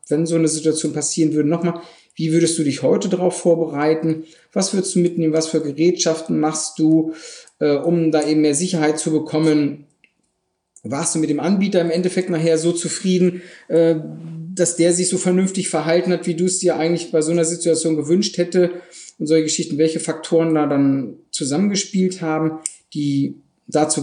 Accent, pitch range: German, 150-175 Hz